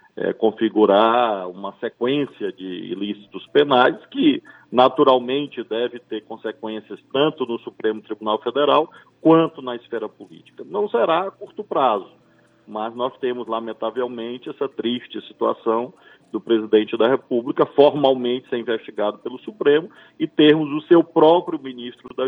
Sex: male